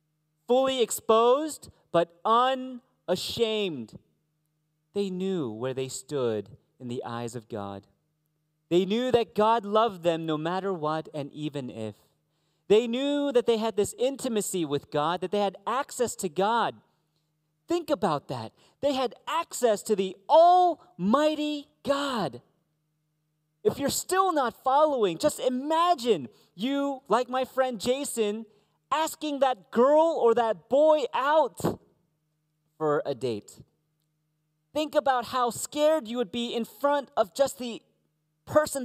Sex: male